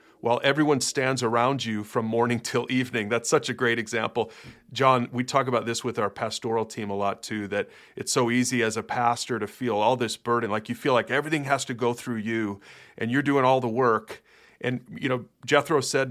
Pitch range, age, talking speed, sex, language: 110-130 Hz, 40-59, 220 wpm, male, English